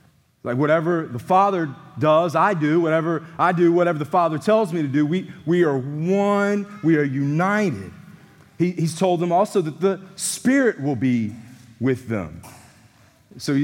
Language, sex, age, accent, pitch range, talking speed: English, male, 40-59, American, 130-180 Hz, 165 wpm